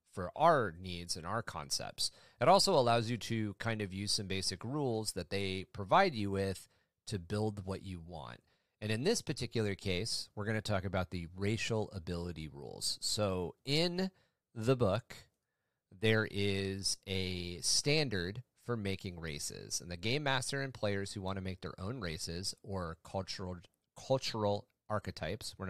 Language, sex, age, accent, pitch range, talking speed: English, male, 30-49, American, 95-120 Hz, 160 wpm